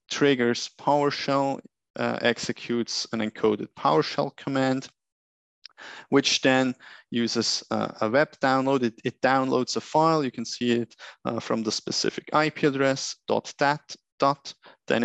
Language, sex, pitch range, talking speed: English, male, 115-140 Hz, 135 wpm